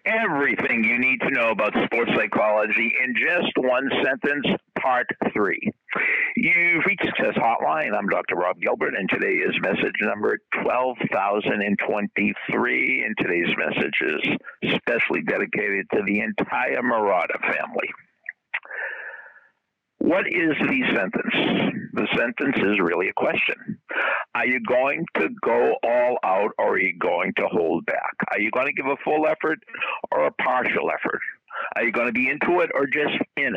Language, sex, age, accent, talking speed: English, male, 60-79, American, 150 wpm